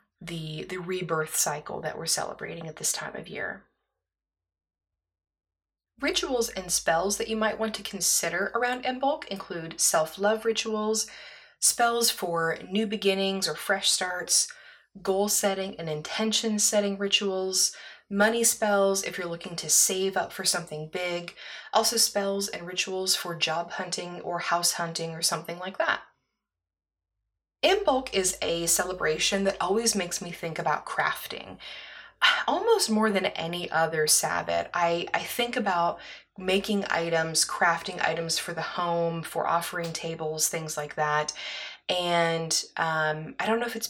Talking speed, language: 145 wpm, English